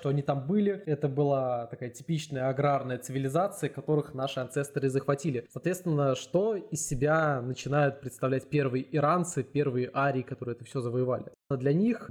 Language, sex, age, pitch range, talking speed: Russian, male, 20-39, 130-155 Hz, 150 wpm